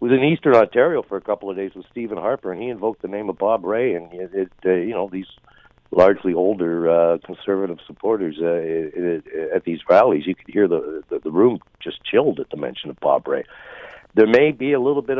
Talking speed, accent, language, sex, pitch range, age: 235 wpm, American, English, male, 85-130 Hz, 60-79